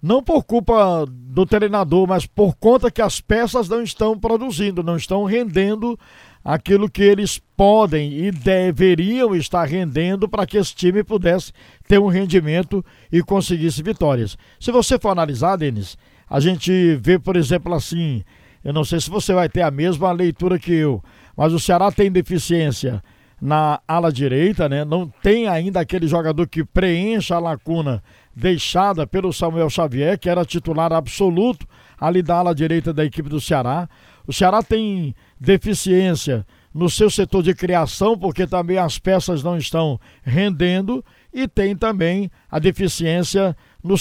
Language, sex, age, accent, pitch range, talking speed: Portuguese, male, 60-79, Brazilian, 160-195 Hz, 155 wpm